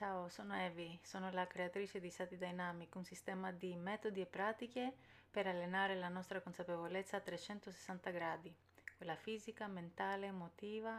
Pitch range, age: 170-200 Hz, 30-49